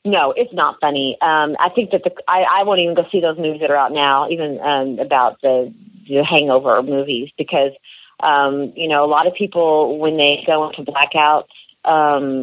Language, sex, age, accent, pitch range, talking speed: English, female, 40-59, American, 140-165 Hz, 205 wpm